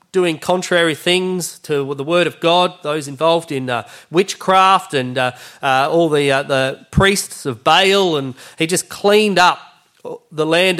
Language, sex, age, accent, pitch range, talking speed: English, male, 30-49, Australian, 135-170 Hz, 165 wpm